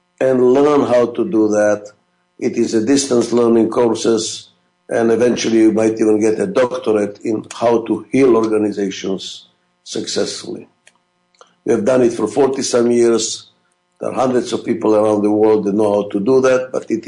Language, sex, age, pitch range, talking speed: English, male, 50-69, 110-180 Hz, 175 wpm